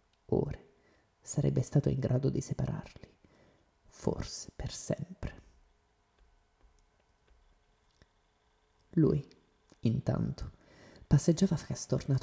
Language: Italian